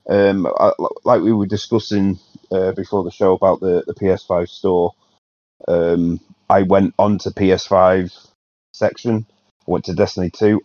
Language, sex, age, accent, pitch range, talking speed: English, male, 30-49, British, 85-95 Hz, 165 wpm